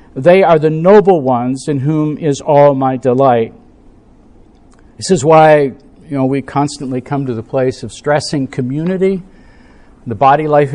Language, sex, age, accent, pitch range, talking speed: English, male, 50-69, American, 140-175 Hz, 145 wpm